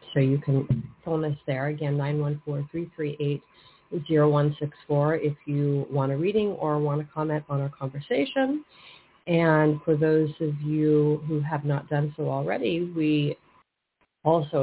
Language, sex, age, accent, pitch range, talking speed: English, female, 40-59, American, 140-165 Hz, 135 wpm